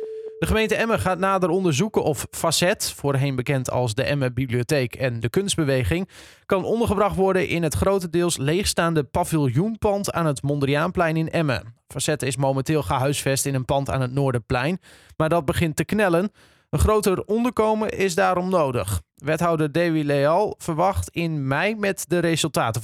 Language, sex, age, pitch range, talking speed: Dutch, male, 20-39, 140-185 Hz, 160 wpm